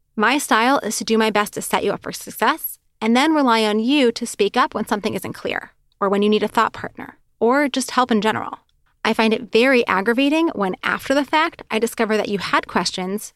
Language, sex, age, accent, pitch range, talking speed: English, female, 30-49, American, 210-255 Hz, 235 wpm